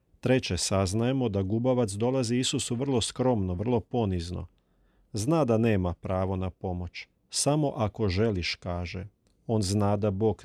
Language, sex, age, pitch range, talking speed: Croatian, male, 40-59, 95-120 Hz, 140 wpm